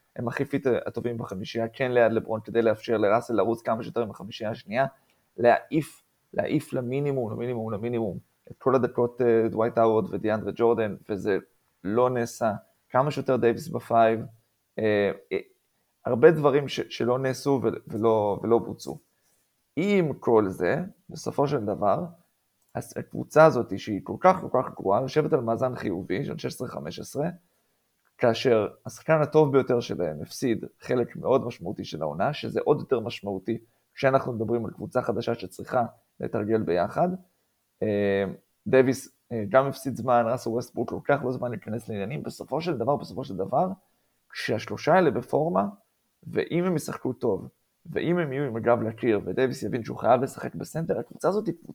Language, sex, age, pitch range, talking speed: English, male, 20-39, 110-135 Hz, 120 wpm